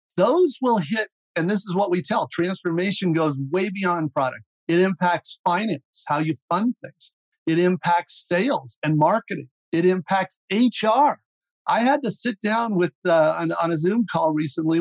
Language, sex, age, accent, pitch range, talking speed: English, male, 50-69, American, 170-225 Hz, 170 wpm